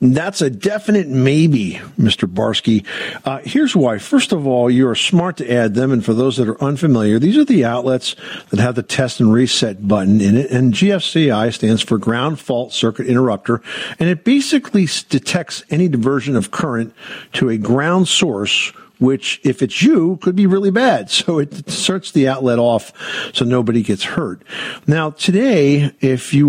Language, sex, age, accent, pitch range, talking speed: English, male, 50-69, American, 115-155 Hz, 180 wpm